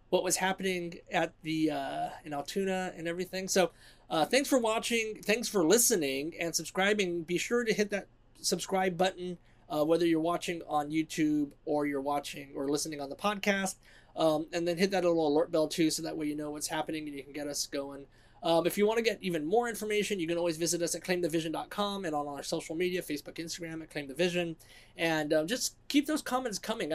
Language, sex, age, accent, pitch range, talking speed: English, male, 20-39, American, 145-190 Hz, 215 wpm